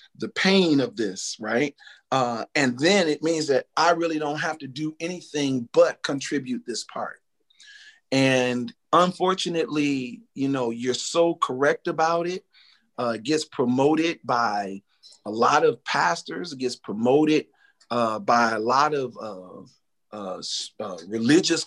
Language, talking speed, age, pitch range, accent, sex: English, 140 wpm, 40-59, 120-155 Hz, American, male